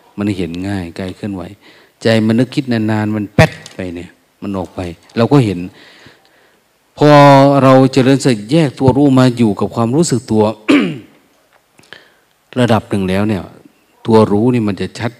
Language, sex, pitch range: Thai, male, 95-115 Hz